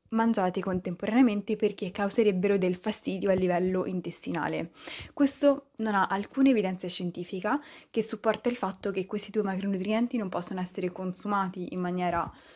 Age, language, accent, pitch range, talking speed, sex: 20-39, Italian, native, 185-220 Hz, 140 wpm, female